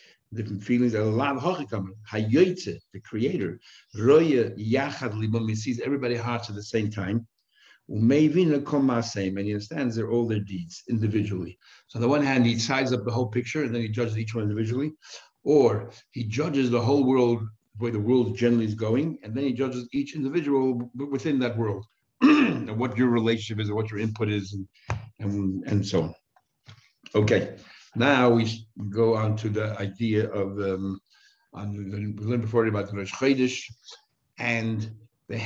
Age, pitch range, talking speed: 60-79, 105-125 Hz, 150 wpm